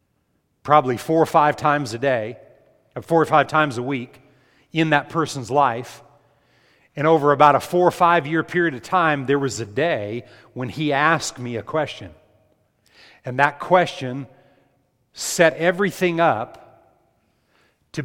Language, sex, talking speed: English, male, 150 wpm